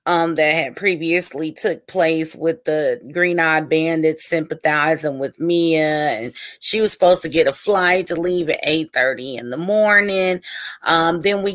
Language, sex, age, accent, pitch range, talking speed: English, female, 30-49, American, 165-200 Hz, 165 wpm